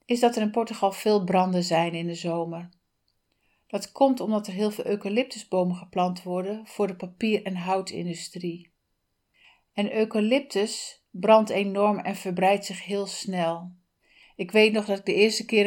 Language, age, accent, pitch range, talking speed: Dutch, 60-79, Dutch, 185-220 Hz, 160 wpm